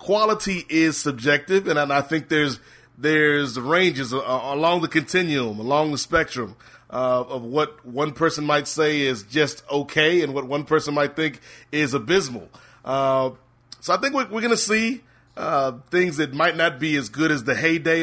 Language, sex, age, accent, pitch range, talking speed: English, male, 30-49, American, 135-165 Hz, 175 wpm